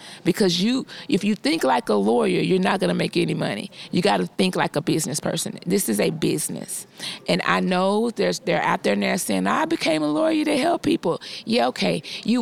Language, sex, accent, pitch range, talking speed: English, female, American, 175-215 Hz, 220 wpm